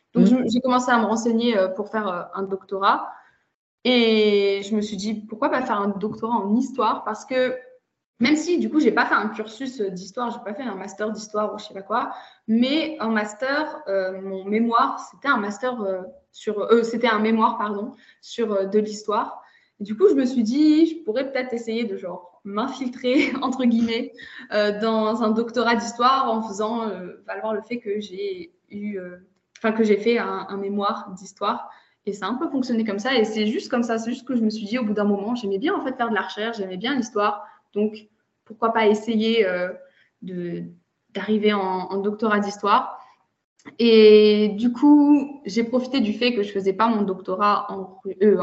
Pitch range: 200-240 Hz